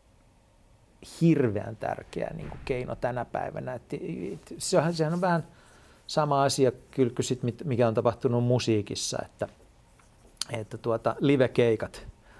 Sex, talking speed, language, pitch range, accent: male, 75 wpm, Finnish, 115-140 Hz, native